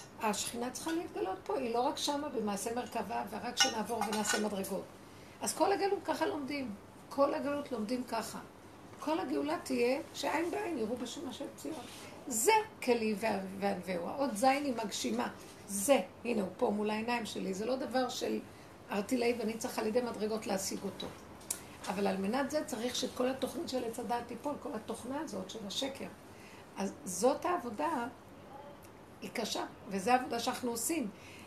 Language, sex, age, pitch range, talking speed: Hebrew, female, 50-69, 215-270 Hz, 155 wpm